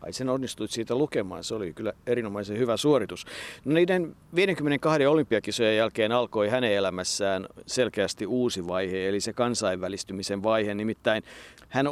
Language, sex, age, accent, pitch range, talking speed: Finnish, male, 50-69, native, 110-140 Hz, 140 wpm